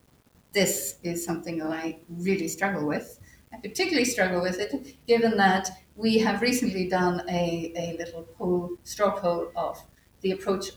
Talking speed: 150 wpm